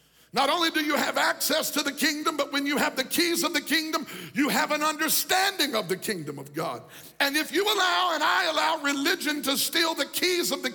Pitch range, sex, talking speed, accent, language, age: 285-335 Hz, male, 230 wpm, American, English, 50-69